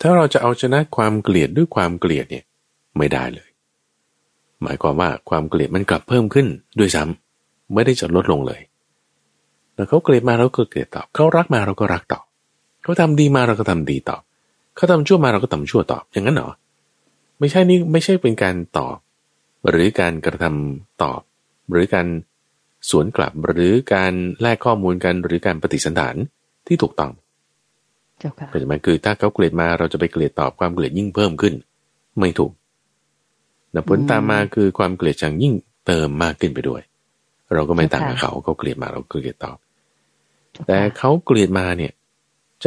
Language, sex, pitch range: Thai, male, 80-120 Hz